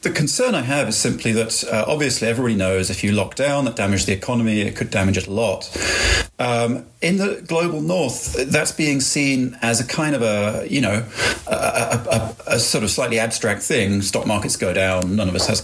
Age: 40-59